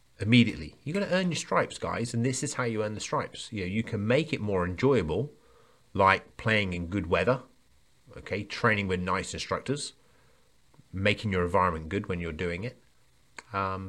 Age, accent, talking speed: 30-49, British, 185 wpm